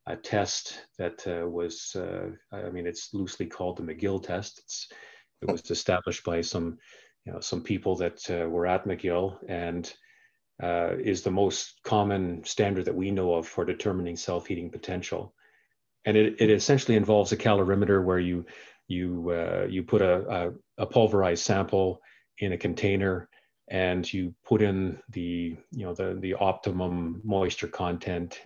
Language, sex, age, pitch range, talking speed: English, male, 40-59, 85-105 Hz, 160 wpm